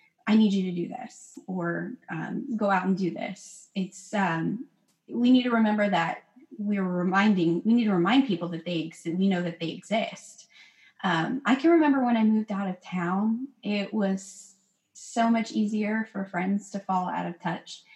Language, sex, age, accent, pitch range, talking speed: English, female, 20-39, American, 180-225 Hz, 195 wpm